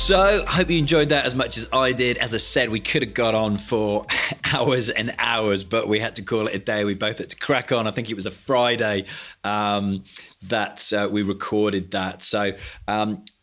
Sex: male